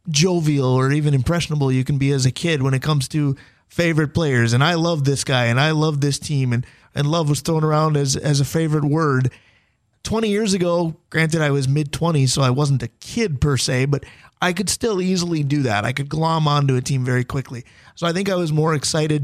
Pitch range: 130-160 Hz